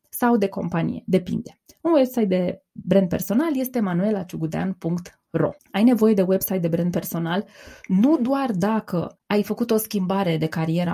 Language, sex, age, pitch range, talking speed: Romanian, female, 20-39, 180-225 Hz, 150 wpm